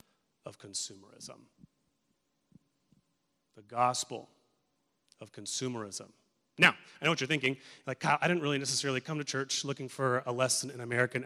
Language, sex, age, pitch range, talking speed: English, male, 30-49, 130-160 Hz, 140 wpm